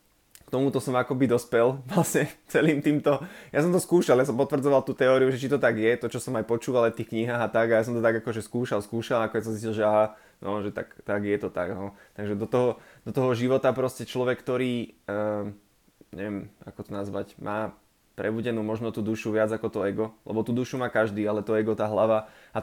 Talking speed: 235 wpm